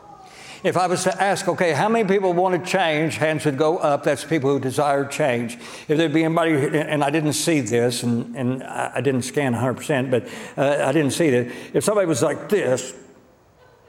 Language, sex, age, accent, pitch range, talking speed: English, male, 60-79, American, 130-165 Hz, 205 wpm